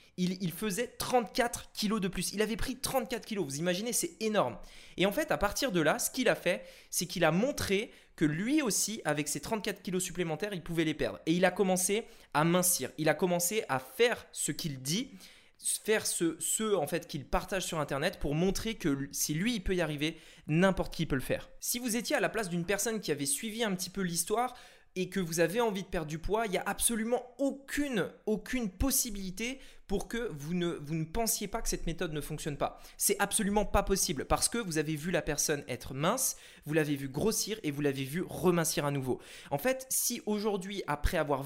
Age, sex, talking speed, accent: 20-39, male, 225 wpm, French